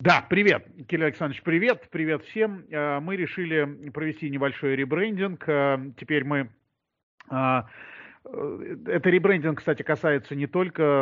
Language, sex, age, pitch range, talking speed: Russian, male, 40-59, 125-155 Hz, 110 wpm